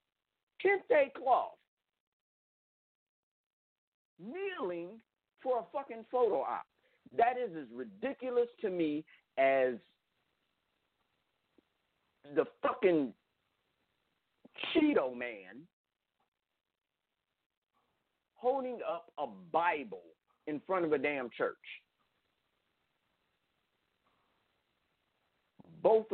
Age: 50-69